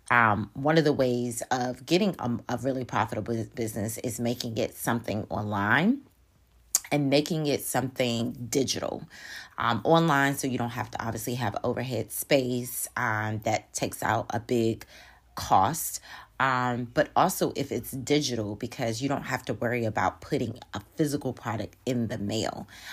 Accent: American